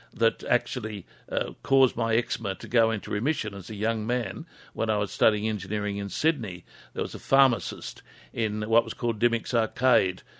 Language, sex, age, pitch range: English, male, 60-79, 110-130 Hz